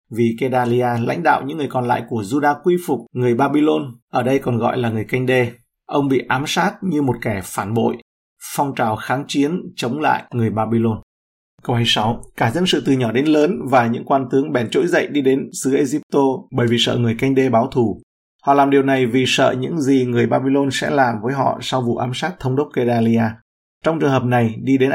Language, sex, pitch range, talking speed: Vietnamese, male, 120-140 Hz, 225 wpm